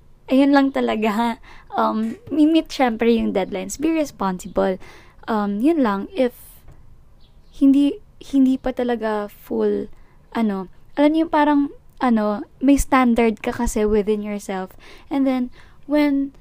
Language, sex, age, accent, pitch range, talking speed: Filipino, female, 20-39, native, 210-255 Hz, 120 wpm